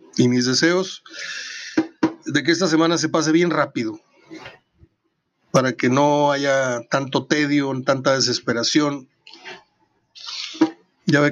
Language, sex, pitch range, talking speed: Spanish, male, 125-155 Hz, 110 wpm